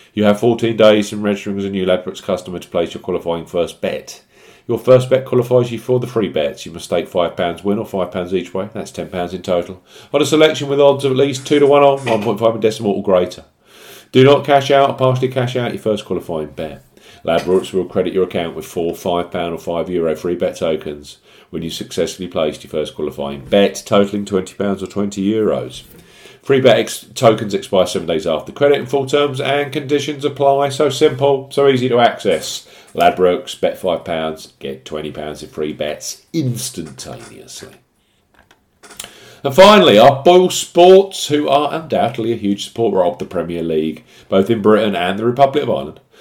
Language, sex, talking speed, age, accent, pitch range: English, male, 190 wpm, 40-59, British, 90-135 Hz